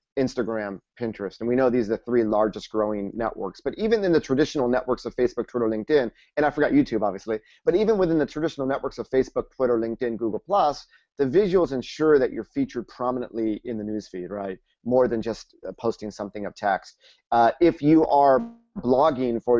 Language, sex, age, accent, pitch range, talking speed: English, male, 30-49, American, 115-140 Hz, 190 wpm